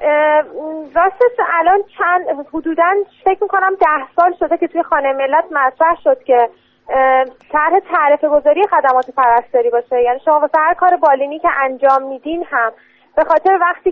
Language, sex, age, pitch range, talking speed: Persian, female, 30-49, 275-365 Hz, 145 wpm